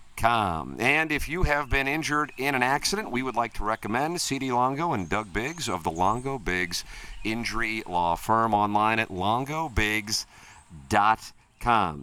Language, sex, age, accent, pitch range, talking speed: English, male, 50-69, American, 95-125 Hz, 145 wpm